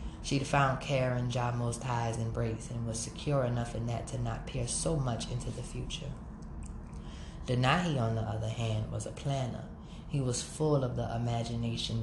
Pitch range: 115-130 Hz